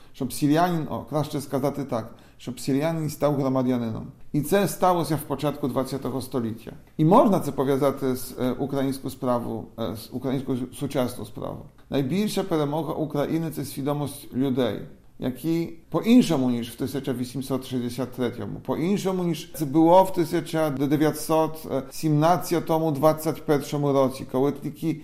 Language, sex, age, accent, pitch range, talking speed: Ukrainian, male, 40-59, Polish, 135-175 Hz, 130 wpm